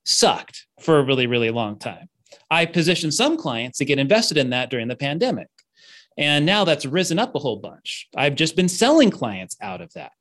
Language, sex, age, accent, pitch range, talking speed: English, male, 30-49, American, 125-160 Hz, 205 wpm